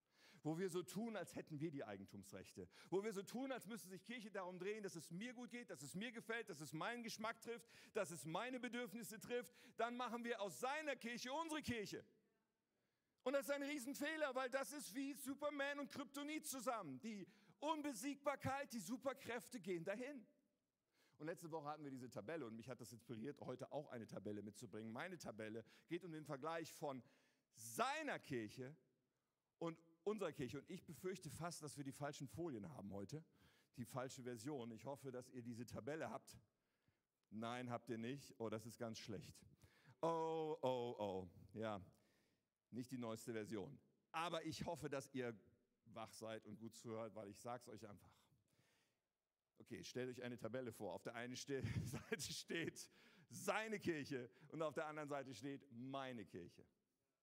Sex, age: male, 50-69